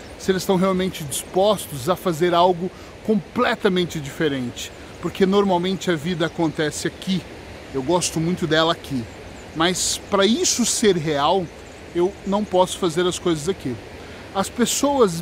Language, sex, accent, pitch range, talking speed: Portuguese, male, Brazilian, 170-205 Hz, 140 wpm